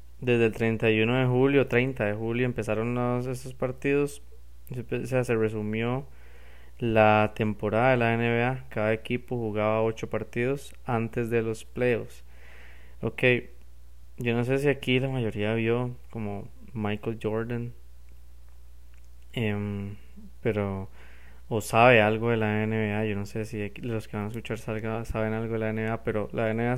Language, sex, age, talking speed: Spanish, male, 20-39, 150 wpm